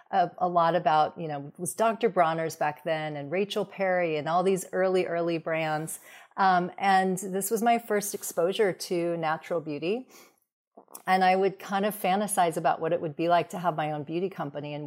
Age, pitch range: 40-59, 160-190 Hz